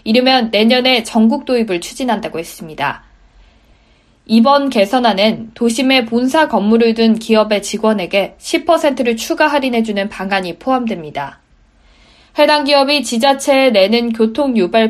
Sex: female